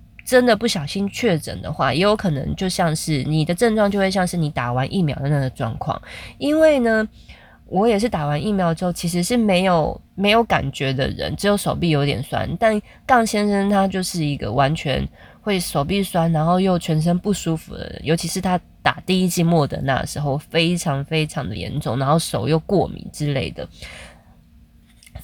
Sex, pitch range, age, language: female, 150-195 Hz, 20-39, Chinese